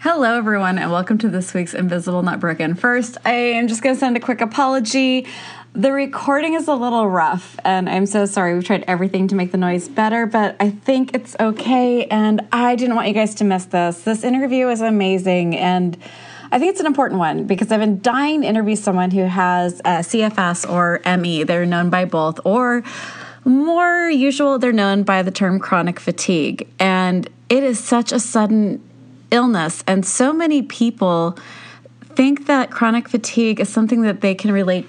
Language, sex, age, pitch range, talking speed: English, female, 20-39, 185-245 Hz, 190 wpm